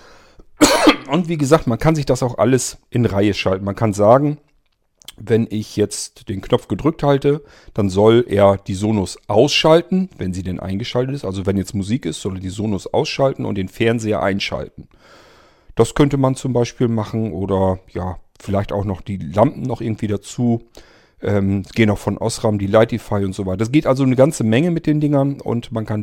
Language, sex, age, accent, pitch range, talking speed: German, male, 40-59, German, 105-140 Hz, 195 wpm